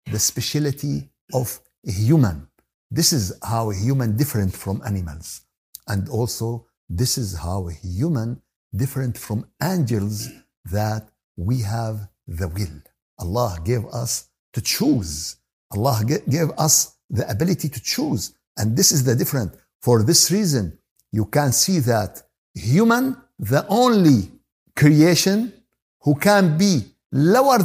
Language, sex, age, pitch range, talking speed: Arabic, male, 60-79, 110-160 Hz, 130 wpm